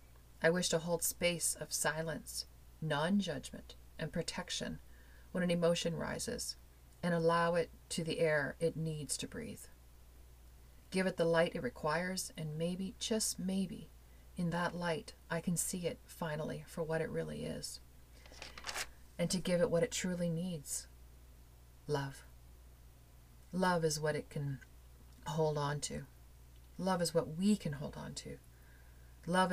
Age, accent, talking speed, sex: 40-59, American, 150 wpm, female